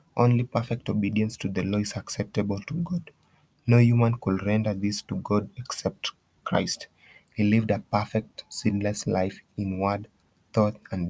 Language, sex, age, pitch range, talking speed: English, male, 30-49, 100-115 Hz, 155 wpm